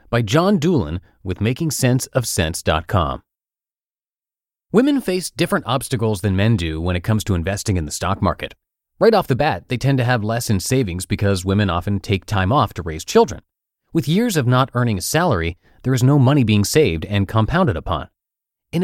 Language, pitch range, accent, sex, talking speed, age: English, 95-135 Hz, American, male, 185 wpm, 30-49